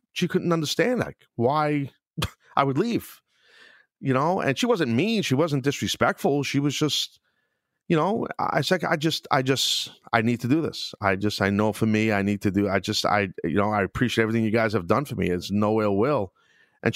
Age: 40-59